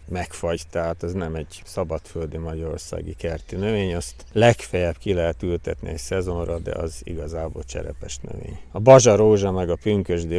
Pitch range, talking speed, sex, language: 85-100 Hz, 150 wpm, male, Hungarian